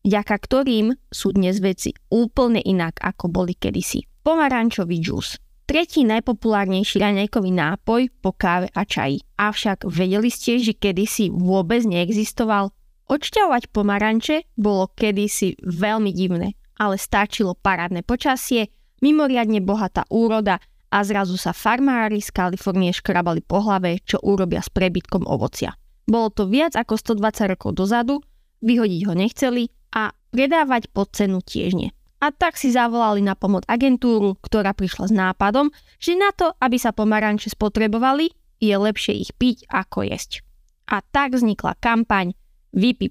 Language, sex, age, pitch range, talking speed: Slovak, female, 20-39, 195-240 Hz, 135 wpm